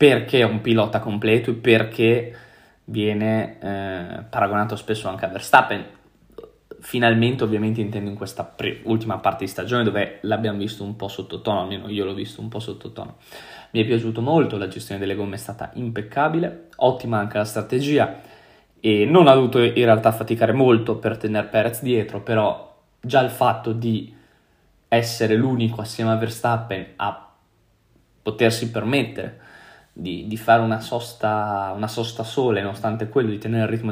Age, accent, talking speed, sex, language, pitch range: 20-39, native, 160 wpm, male, Italian, 105-120 Hz